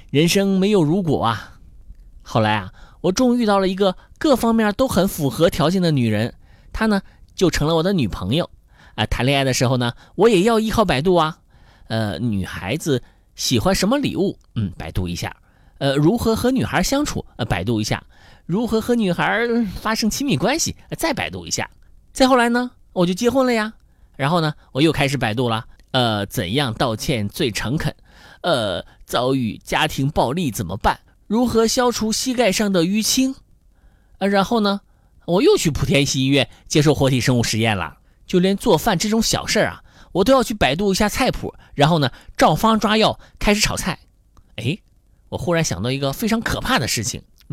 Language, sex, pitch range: Chinese, male, 130-220 Hz